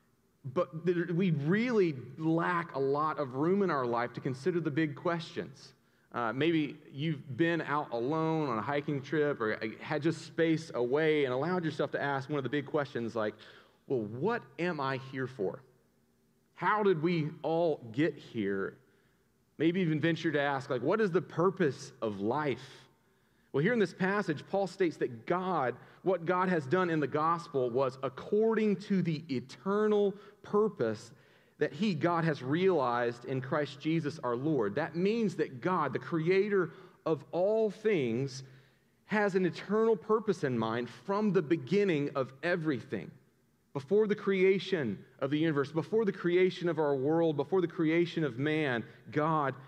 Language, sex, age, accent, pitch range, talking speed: English, male, 30-49, American, 140-185 Hz, 165 wpm